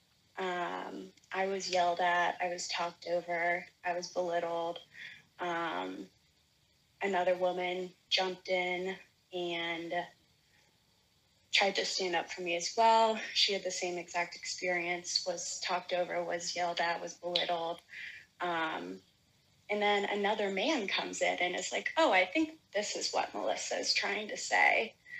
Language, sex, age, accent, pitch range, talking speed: English, female, 20-39, American, 175-205 Hz, 145 wpm